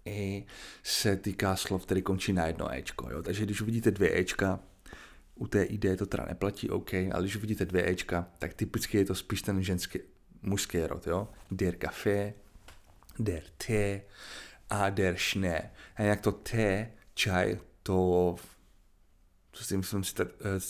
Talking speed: 155 wpm